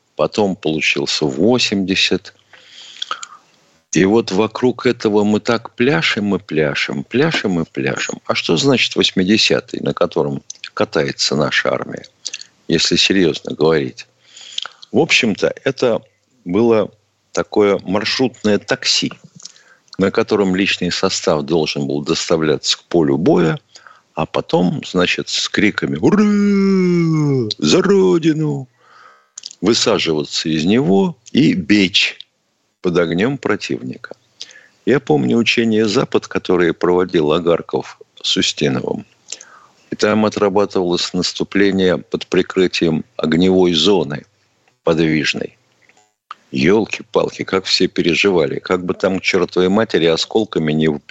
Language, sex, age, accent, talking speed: Russian, male, 50-69, native, 105 wpm